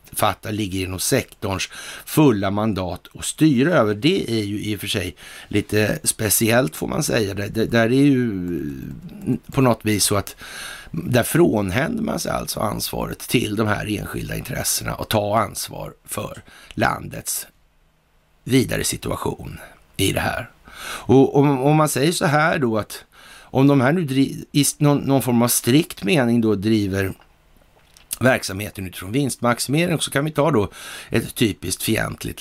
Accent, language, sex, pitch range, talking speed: native, Swedish, male, 100-140 Hz, 160 wpm